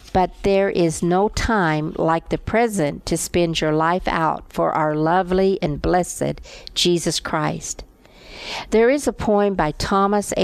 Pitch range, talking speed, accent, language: 165-200 Hz, 150 wpm, American, English